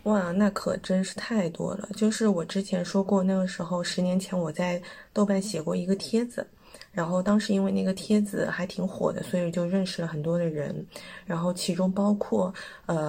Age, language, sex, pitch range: 20-39, Chinese, female, 175-205 Hz